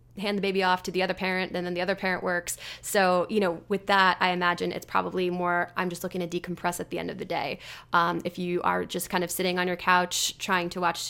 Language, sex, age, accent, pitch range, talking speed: English, female, 20-39, American, 180-215 Hz, 265 wpm